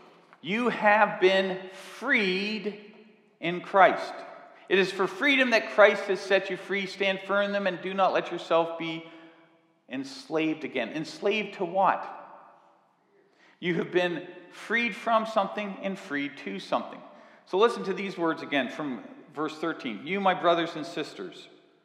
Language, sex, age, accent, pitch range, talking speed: English, male, 50-69, American, 165-205 Hz, 150 wpm